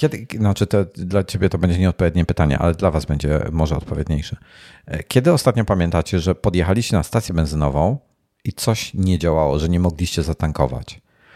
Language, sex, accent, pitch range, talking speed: Polish, male, native, 80-100 Hz, 150 wpm